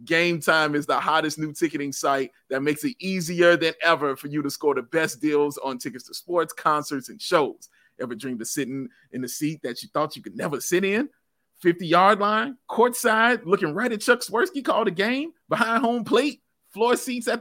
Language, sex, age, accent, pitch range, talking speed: English, male, 30-49, American, 145-190 Hz, 205 wpm